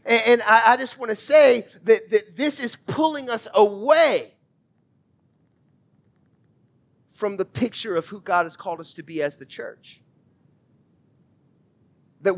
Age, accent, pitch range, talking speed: 40-59, American, 185-235 Hz, 130 wpm